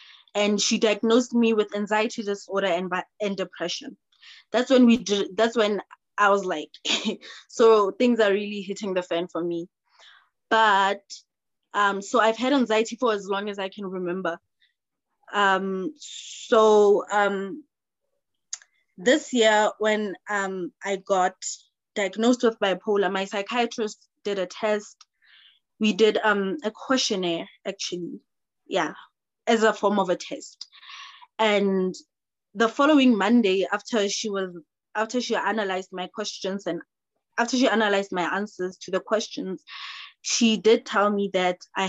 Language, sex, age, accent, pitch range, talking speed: English, female, 20-39, South African, 190-235 Hz, 140 wpm